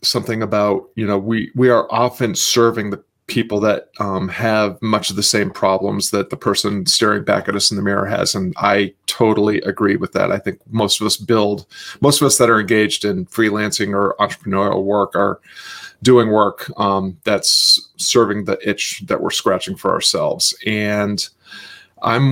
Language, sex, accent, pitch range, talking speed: English, male, American, 105-120 Hz, 185 wpm